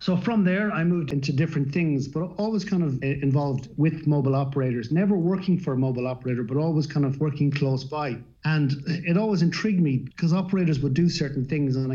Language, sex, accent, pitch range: English, male, Irish, 130-155 Hz